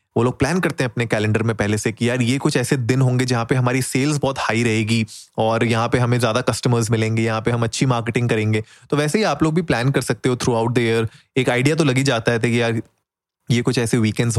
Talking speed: 265 wpm